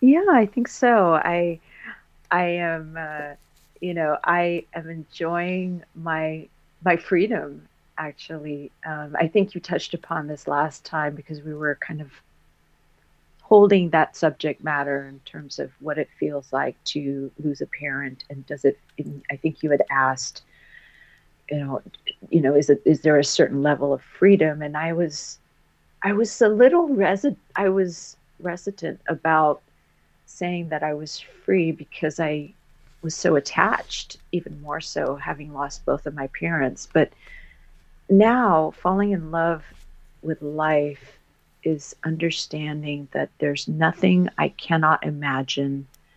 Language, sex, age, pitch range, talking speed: English, female, 40-59, 140-170 Hz, 150 wpm